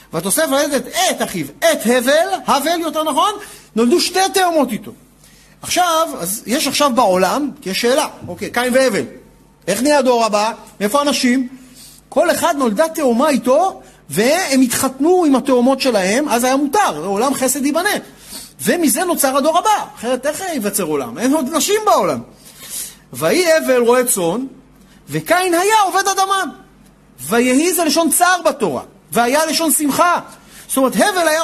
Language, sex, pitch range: Hebrew, male, 240-340 Hz